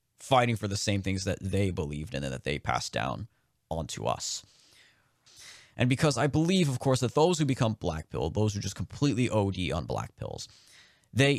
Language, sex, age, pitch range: English, male, 20-39, 95-120 Hz